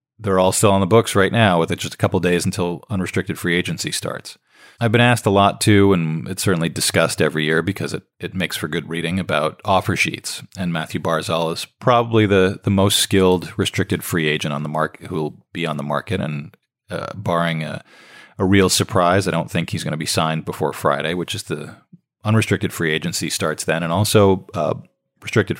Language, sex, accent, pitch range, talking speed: English, male, American, 80-100 Hz, 215 wpm